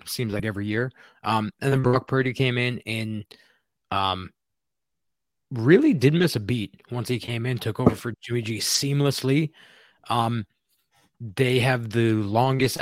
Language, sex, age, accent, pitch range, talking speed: English, male, 20-39, American, 105-130 Hz, 155 wpm